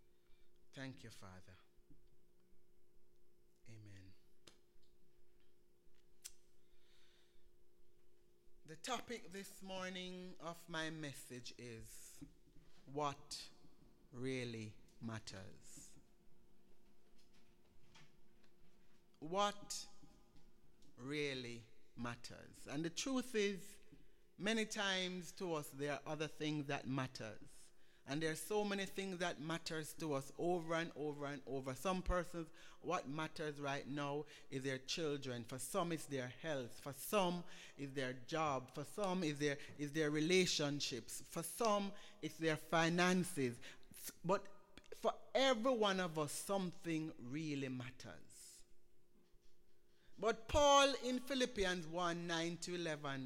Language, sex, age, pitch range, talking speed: English, male, 60-79, 120-180 Hz, 105 wpm